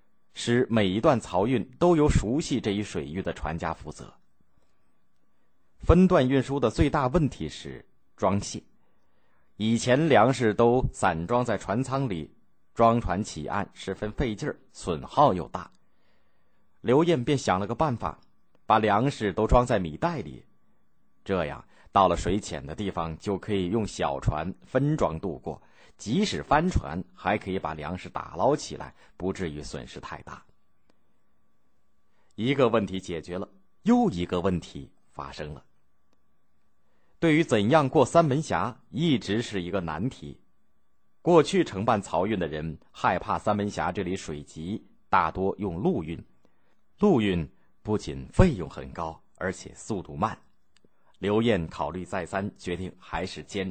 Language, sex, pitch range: Chinese, male, 80-120 Hz